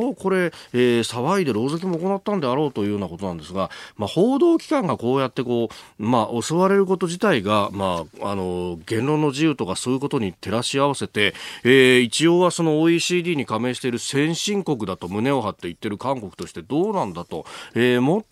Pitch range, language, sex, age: 105-155 Hz, Japanese, male, 40-59